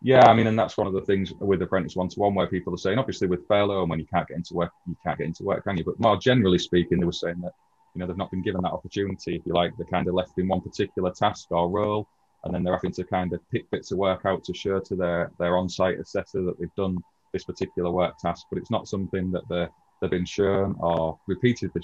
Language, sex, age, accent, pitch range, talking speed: English, male, 30-49, British, 85-100 Hz, 270 wpm